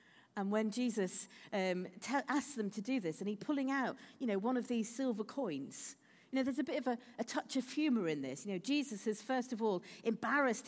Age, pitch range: 50-69, 200-270 Hz